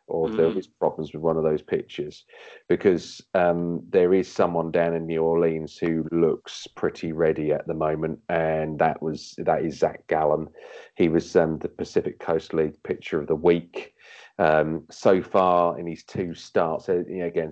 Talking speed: 180 wpm